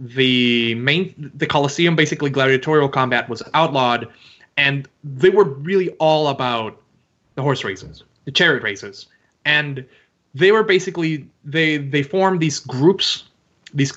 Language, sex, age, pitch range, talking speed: English, male, 20-39, 130-170 Hz, 135 wpm